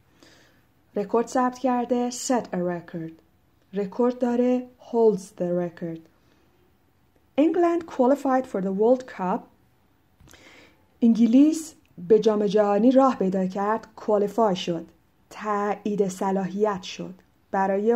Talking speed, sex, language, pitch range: 100 wpm, female, Persian, 180-235 Hz